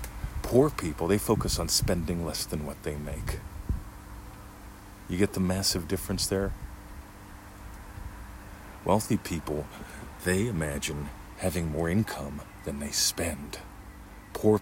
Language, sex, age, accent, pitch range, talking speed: English, male, 40-59, American, 75-100 Hz, 115 wpm